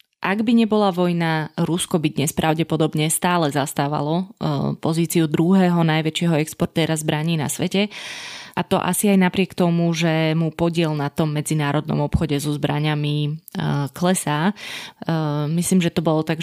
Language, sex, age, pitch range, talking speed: Slovak, female, 20-39, 155-180 Hz, 140 wpm